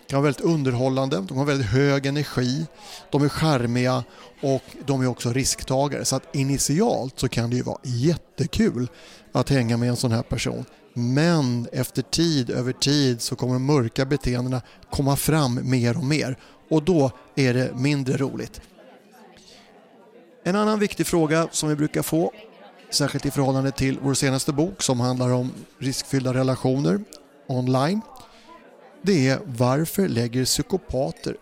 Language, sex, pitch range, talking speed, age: Swedish, male, 125-155 Hz, 155 wpm, 30-49